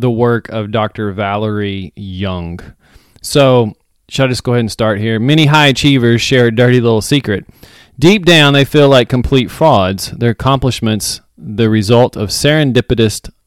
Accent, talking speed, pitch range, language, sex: American, 160 wpm, 110-145 Hz, English, male